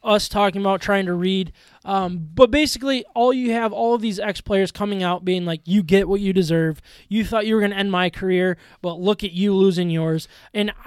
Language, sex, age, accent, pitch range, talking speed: English, male, 20-39, American, 180-220 Hz, 225 wpm